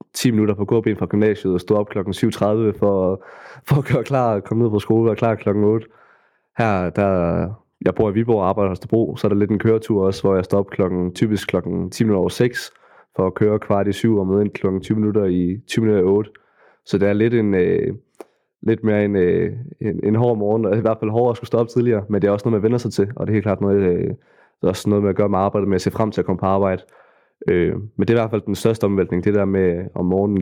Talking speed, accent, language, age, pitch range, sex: 275 wpm, native, Danish, 20-39, 95-110 Hz, male